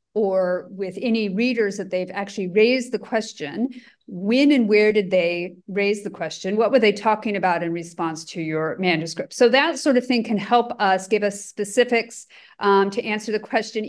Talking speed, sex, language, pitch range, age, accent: 190 wpm, female, English, 190-230 Hz, 40-59, American